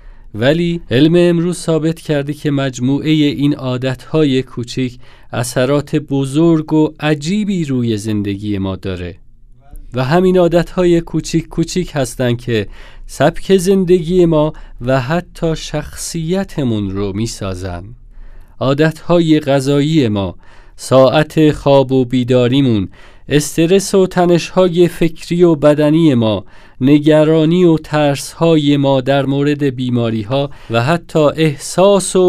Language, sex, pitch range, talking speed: Persian, male, 115-160 Hz, 110 wpm